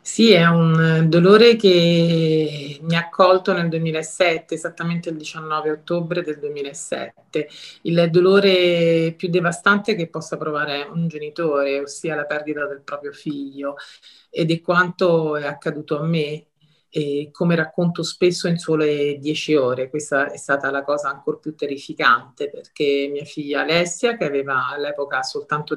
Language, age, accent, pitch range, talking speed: Italian, 40-59, native, 145-165 Hz, 145 wpm